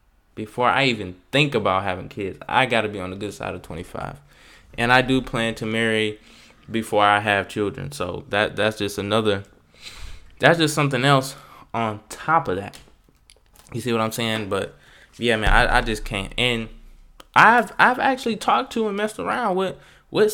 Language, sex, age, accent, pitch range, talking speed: English, male, 10-29, American, 105-135 Hz, 185 wpm